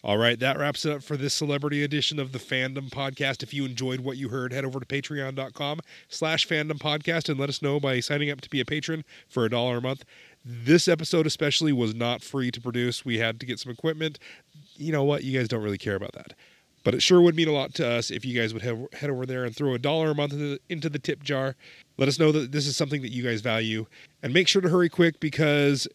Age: 30-49